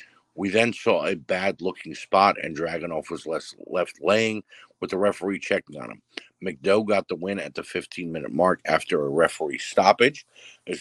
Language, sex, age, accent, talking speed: English, male, 50-69, American, 170 wpm